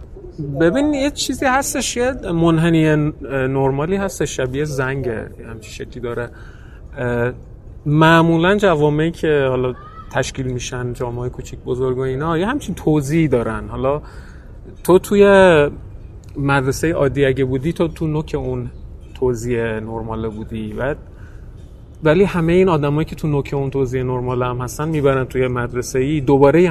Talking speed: 135 wpm